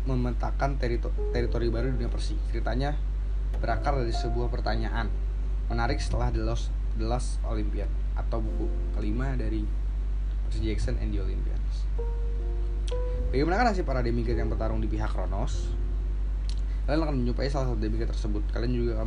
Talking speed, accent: 145 wpm, native